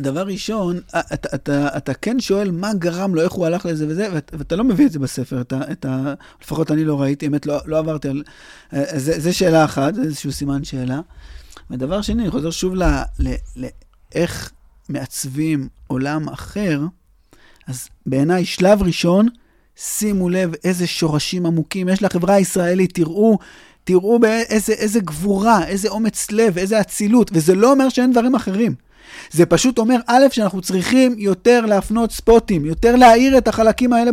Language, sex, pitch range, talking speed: Hebrew, male, 160-230 Hz, 160 wpm